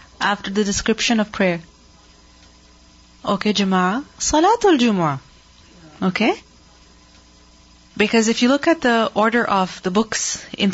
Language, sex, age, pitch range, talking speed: English, female, 30-49, 180-240 Hz, 115 wpm